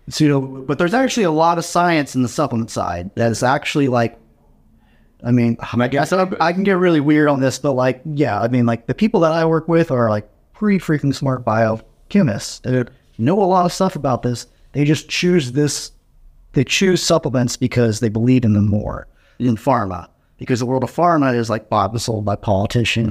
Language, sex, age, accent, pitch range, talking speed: English, male, 30-49, American, 110-135 Hz, 215 wpm